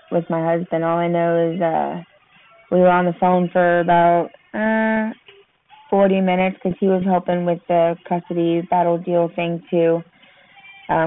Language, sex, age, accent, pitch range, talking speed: English, female, 20-39, American, 170-200 Hz, 165 wpm